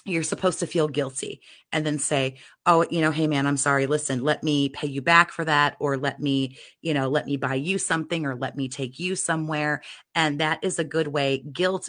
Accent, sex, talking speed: American, female, 230 wpm